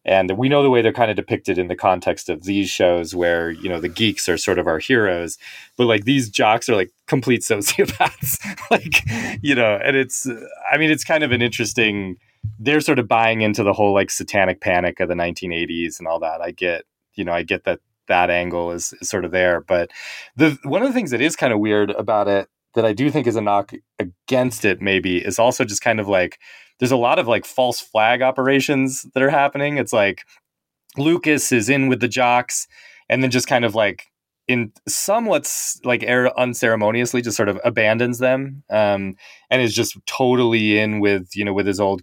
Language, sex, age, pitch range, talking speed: English, male, 30-49, 95-125 Hz, 215 wpm